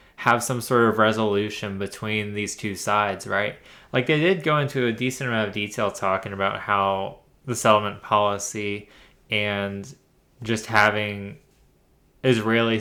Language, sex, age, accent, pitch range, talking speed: English, male, 20-39, American, 105-120 Hz, 140 wpm